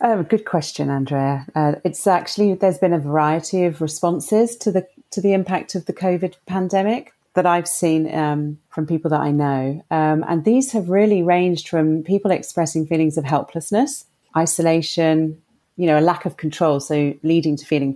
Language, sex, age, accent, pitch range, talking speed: English, female, 30-49, British, 155-185 Hz, 180 wpm